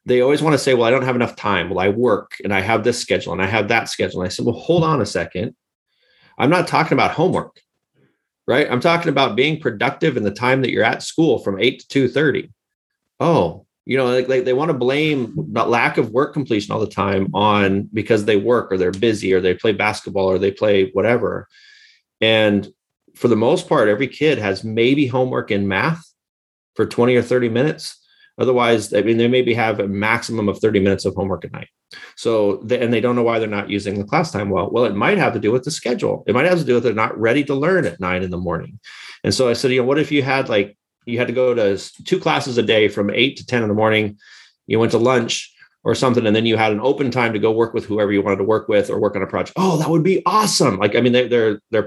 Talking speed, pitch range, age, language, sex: 260 wpm, 100-130 Hz, 30-49, English, male